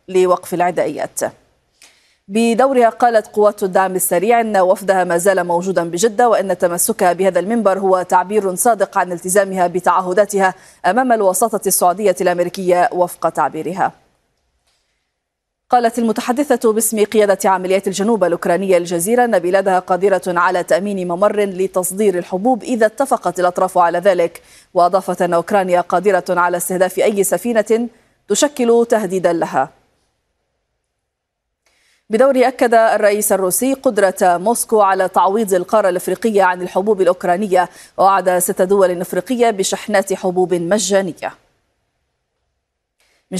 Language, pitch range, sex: Arabic, 180-215 Hz, female